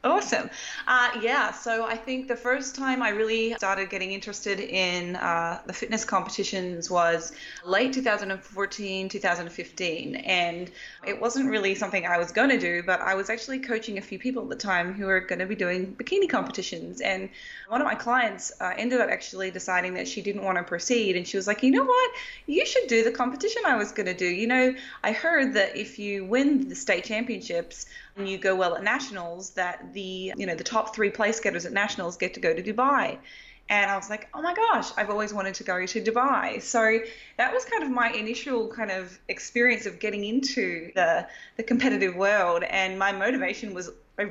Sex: female